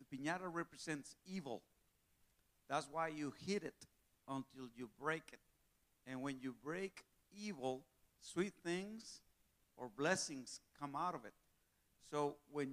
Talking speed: 130 wpm